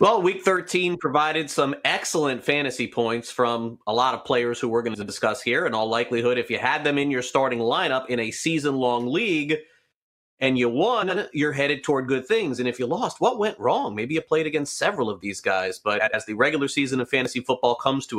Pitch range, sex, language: 115-140 Hz, male, English